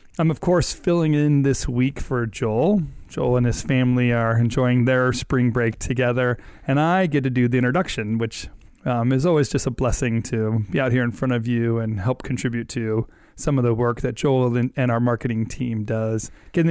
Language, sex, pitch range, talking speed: English, male, 120-140 Hz, 205 wpm